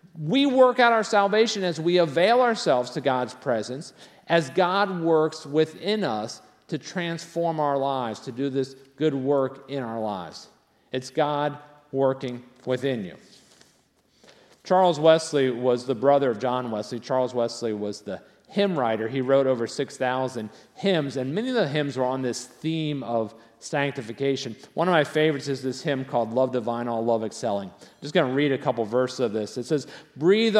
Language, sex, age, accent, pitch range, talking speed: English, male, 50-69, American, 125-165 Hz, 175 wpm